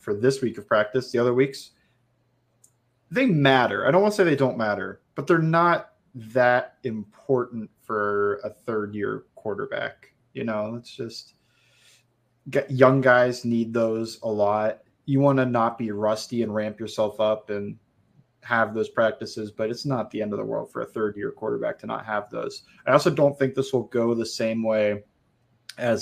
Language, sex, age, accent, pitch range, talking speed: English, male, 20-39, American, 110-130 Hz, 185 wpm